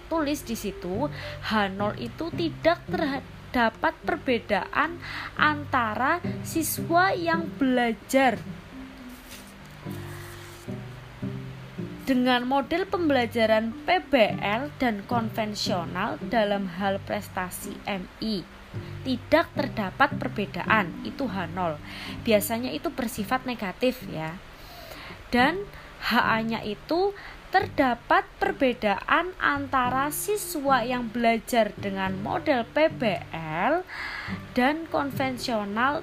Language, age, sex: Indonesian, 20-39, female